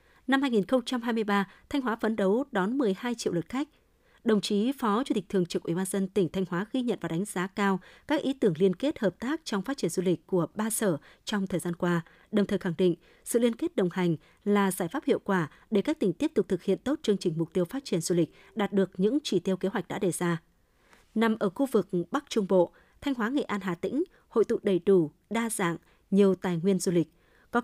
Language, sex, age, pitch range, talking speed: Vietnamese, female, 20-39, 185-230 Hz, 245 wpm